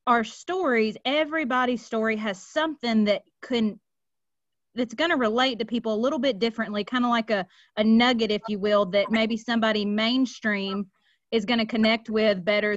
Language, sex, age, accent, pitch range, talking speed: English, female, 30-49, American, 205-245 Hz, 175 wpm